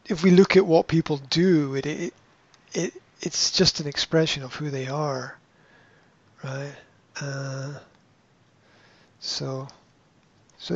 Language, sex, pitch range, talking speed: English, male, 140-175 Hz, 125 wpm